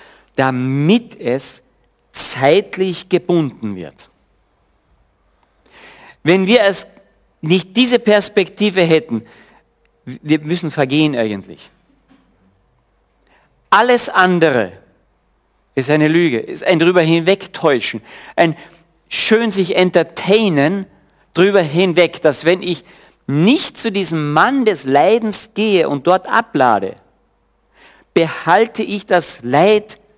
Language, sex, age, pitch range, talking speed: German, male, 50-69, 125-195 Hz, 95 wpm